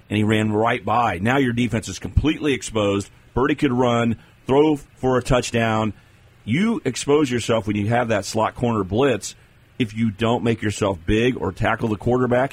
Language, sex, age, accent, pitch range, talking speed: English, male, 40-59, American, 105-125 Hz, 180 wpm